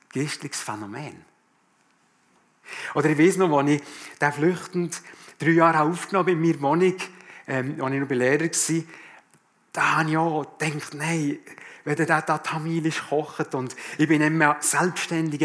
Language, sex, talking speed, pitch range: German, male, 150 wpm, 130-165 Hz